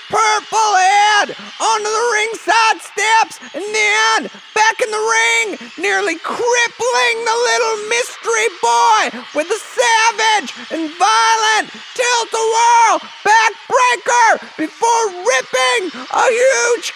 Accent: American